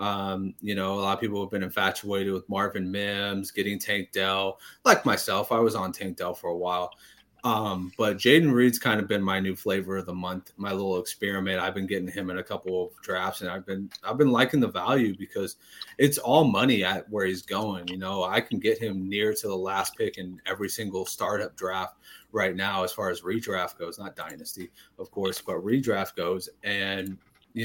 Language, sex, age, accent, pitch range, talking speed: English, male, 30-49, American, 95-110 Hz, 215 wpm